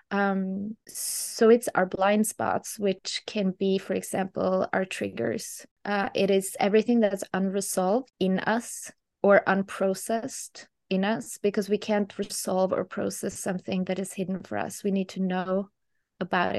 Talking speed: 155 wpm